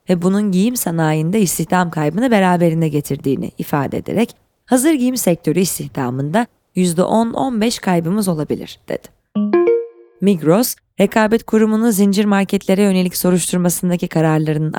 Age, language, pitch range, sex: 20-39, Turkish, 160-215 Hz, female